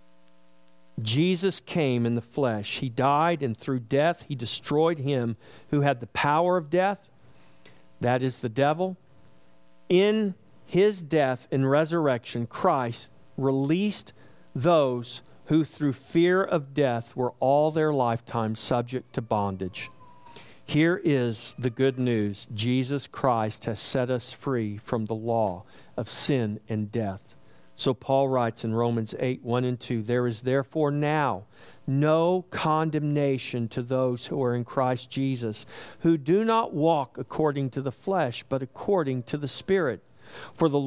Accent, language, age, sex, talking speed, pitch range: American, English, 50-69, male, 145 wpm, 120-155 Hz